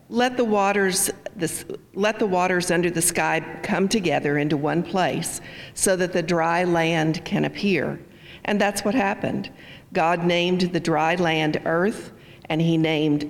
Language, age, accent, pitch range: English, 50-69, American, 160-195 Hz